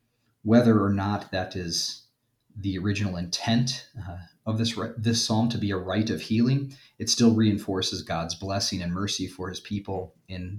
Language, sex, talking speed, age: English, male, 165 wpm, 30-49